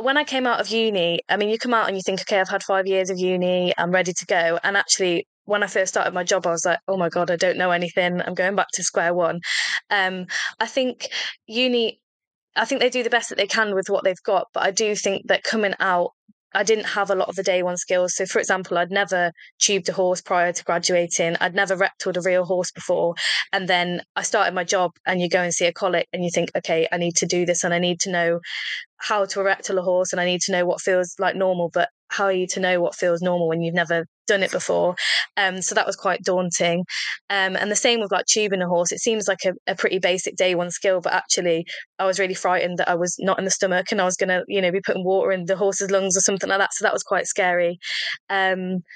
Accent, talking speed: British, 265 wpm